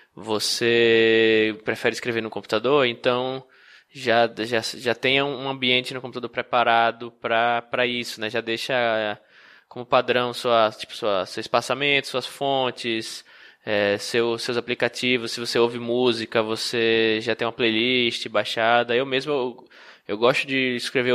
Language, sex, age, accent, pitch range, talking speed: Portuguese, male, 20-39, Brazilian, 115-135 Hz, 120 wpm